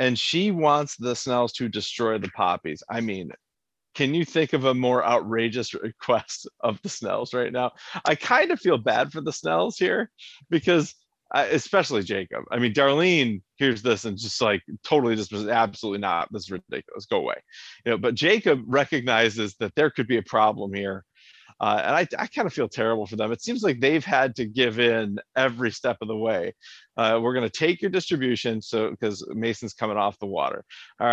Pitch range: 110-140 Hz